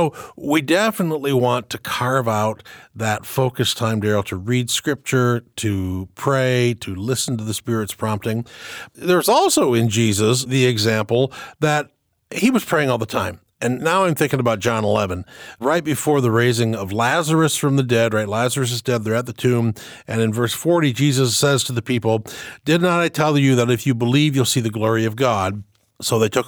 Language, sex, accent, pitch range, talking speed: English, male, American, 110-150 Hz, 195 wpm